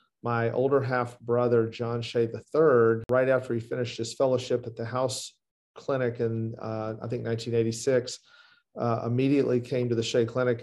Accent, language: American, English